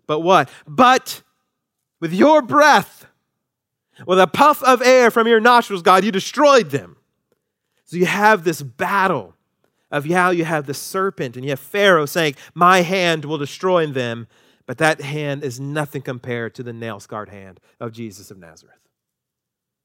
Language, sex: English, male